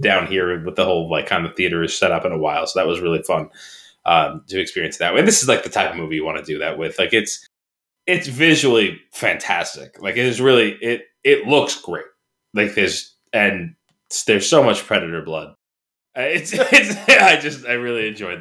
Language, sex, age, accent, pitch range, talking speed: English, male, 20-39, American, 90-145 Hz, 210 wpm